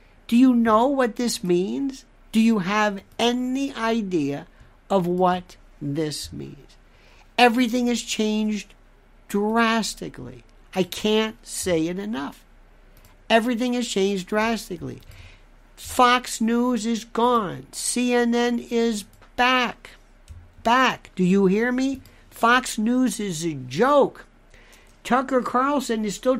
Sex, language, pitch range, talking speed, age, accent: male, English, 190-255 Hz, 110 wpm, 60-79, American